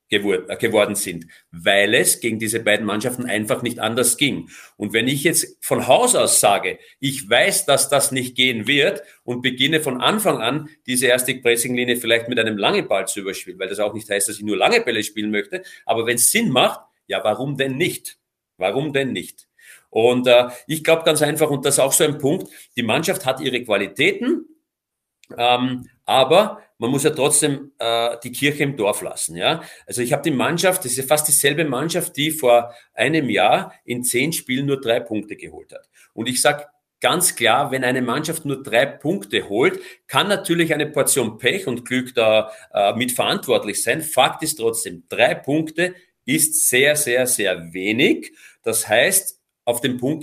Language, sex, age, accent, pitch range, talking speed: German, male, 40-59, German, 120-155 Hz, 190 wpm